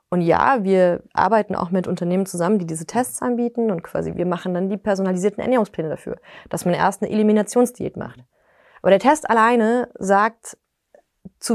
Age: 30-49